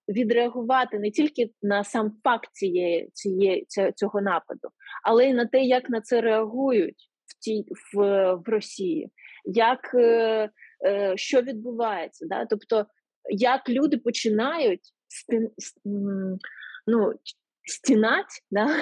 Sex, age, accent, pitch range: female, 20-39, native, 215-275 Hz